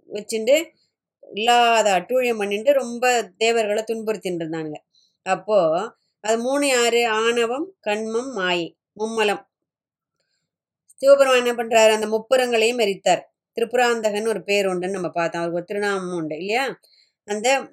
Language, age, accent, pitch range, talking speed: Tamil, 20-39, native, 185-235 Hz, 100 wpm